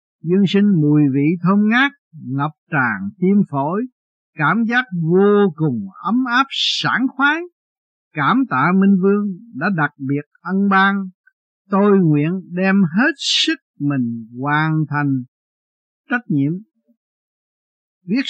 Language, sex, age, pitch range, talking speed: Vietnamese, male, 60-79, 145-210 Hz, 125 wpm